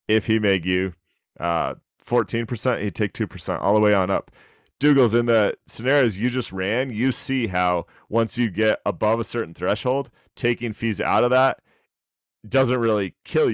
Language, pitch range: English, 95-115 Hz